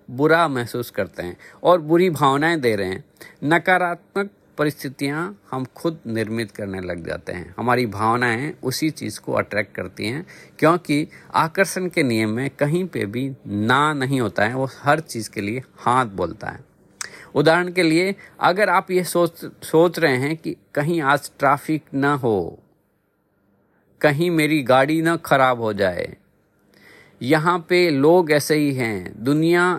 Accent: native